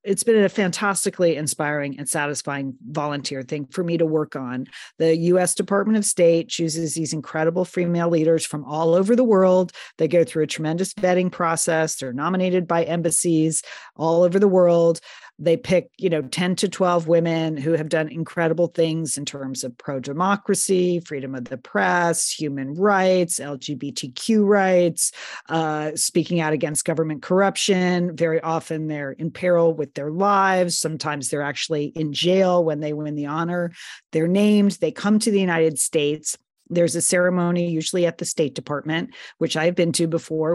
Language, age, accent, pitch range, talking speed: English, 40-59, American, 155-185 Hz, 170 wpm